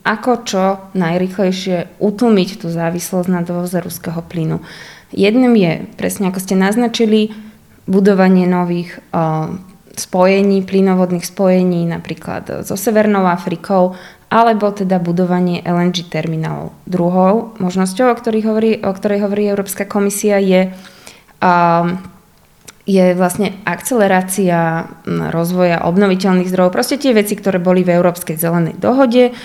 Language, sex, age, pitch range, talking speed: Slovak, female, 20-39, 180-205 Hz, 120 wpm